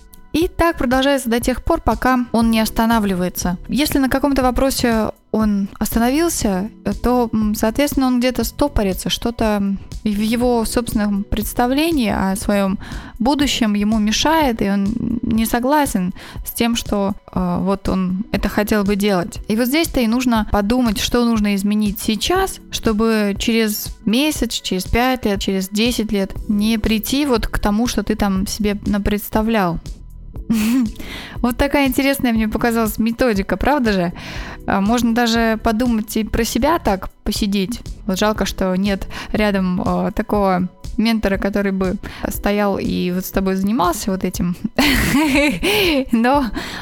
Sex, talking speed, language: female, 140 wpm, Russian